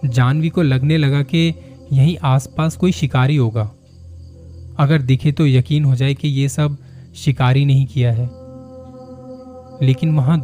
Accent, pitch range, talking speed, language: native, 120-150 Hz, 145 wpm, Hindi